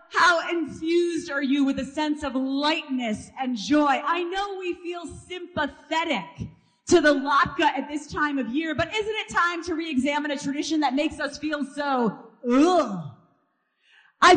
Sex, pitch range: female, 275-360 Hz